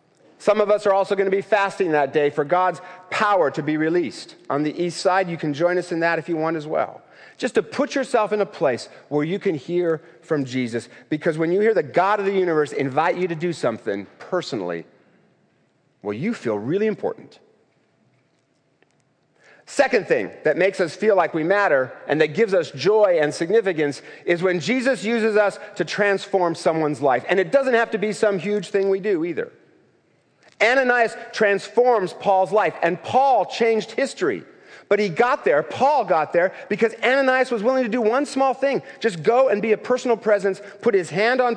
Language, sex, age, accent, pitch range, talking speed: English, male, 40-59, American, 160-225 Hz, 200 wpm